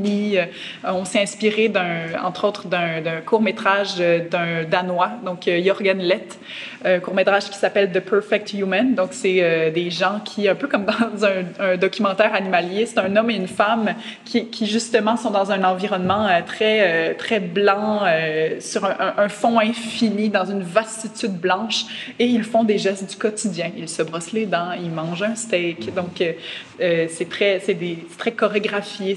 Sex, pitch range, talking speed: female, 185-220 Hz, 170 wpm